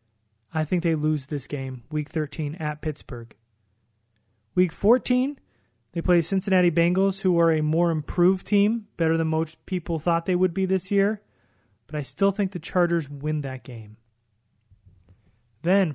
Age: 30-49